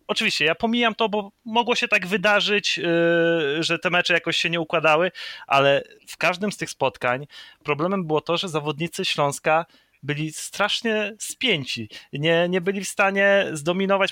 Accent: native